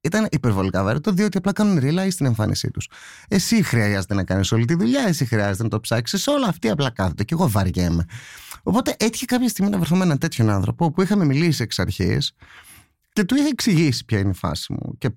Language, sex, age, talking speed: Greek, male, 30-49, 215 wpm